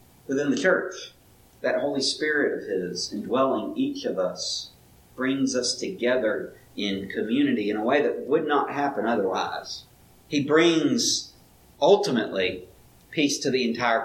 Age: 40-59